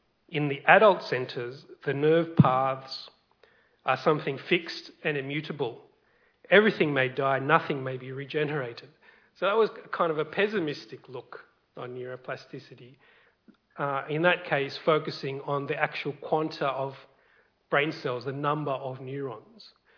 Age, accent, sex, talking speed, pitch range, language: 40-59, Australian, male, 135 wpm, 130-155 Hz, English